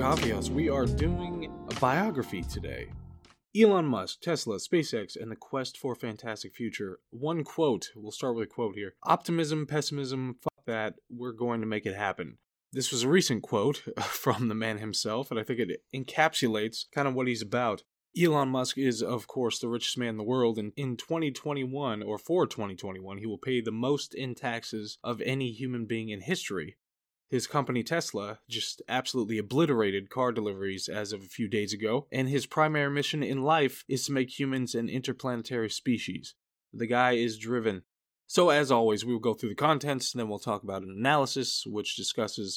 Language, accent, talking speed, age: English, American, 185 wpm, 20-39